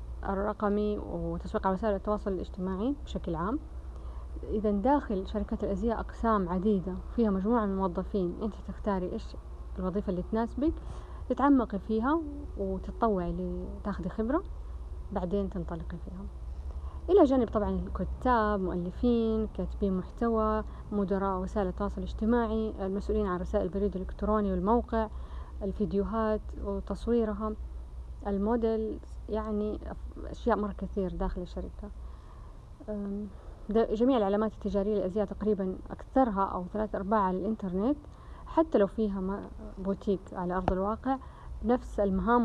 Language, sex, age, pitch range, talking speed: Arabic, female, 30-49, 185-220 Hz, 110 wpm